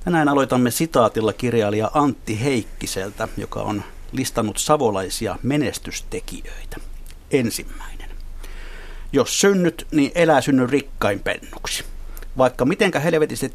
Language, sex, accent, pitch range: Finnish, male, native, 105-155 Hz